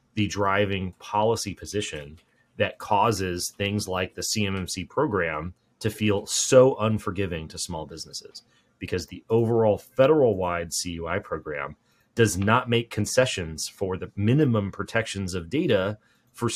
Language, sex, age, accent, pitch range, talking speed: English, male, 30-49, American, 95-115 Hz, 125 wpm